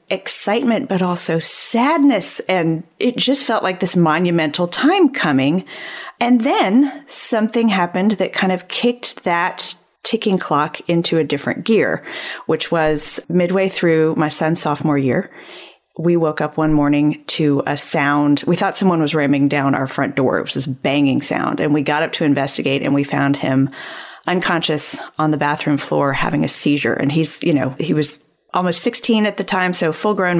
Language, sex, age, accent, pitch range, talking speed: English, female, 40-59, American, 150-190 Hz, 175 wpm